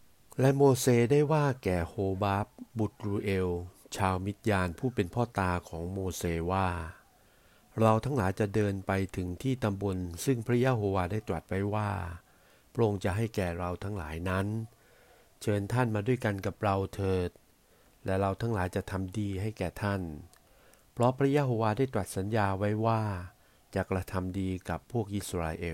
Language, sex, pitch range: Thai, male, 90-110 Hz